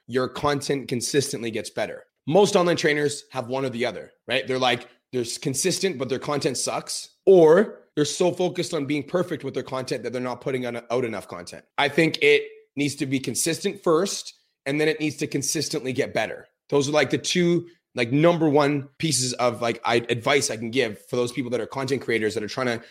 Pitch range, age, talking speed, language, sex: 125-165 Hz, 30-49, 210 wpm, English, male